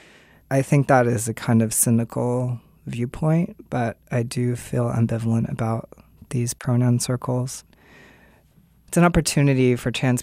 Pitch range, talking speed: 115-130 Hz, 135 wpm